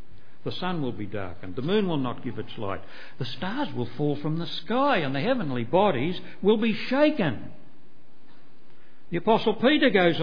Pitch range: 140-220 Hz